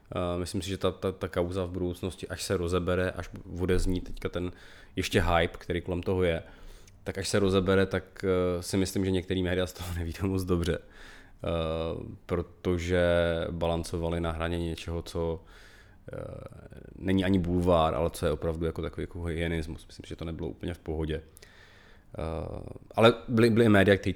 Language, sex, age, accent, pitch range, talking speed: Czech, male, 20-39, native, 85-95 Hz, 180 wpm